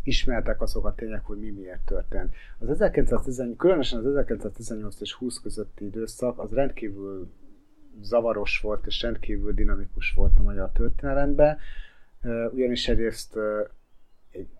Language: Hungarian